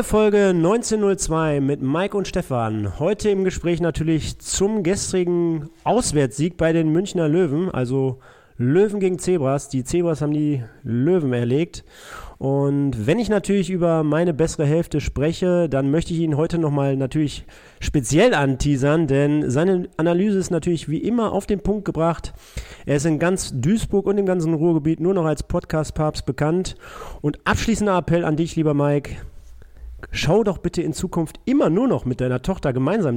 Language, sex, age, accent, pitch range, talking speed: German, male, 40-59, German, 140-185 Hz, 165 wpm